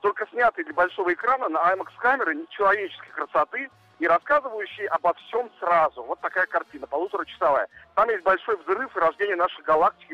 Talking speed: 160 wpm